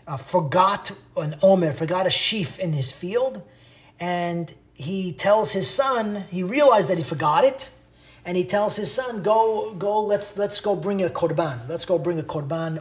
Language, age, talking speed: English, 30-49, 185 wpm